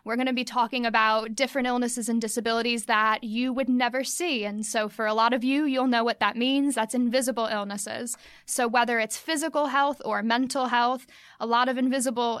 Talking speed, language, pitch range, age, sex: 205 wpm, English, 225-260 Hz, 20-39, female